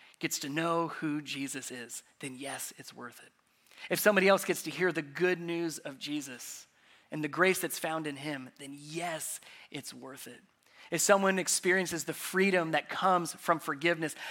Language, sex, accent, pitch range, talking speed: English, male, American, 155-195 Hz, 180 wpm